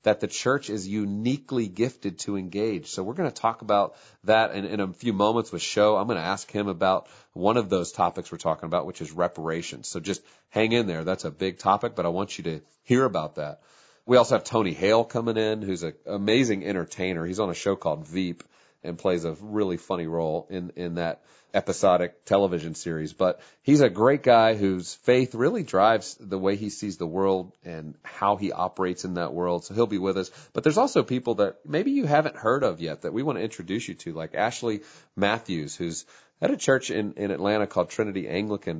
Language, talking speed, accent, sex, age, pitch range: English, 220 wpm, American, male, 40-59, 90-110 Hz